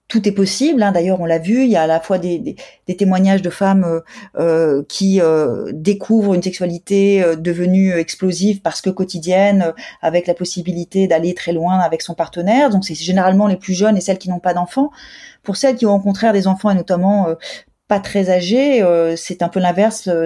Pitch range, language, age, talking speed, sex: 180-215 Hz, French, 30-49, 215 wpm, female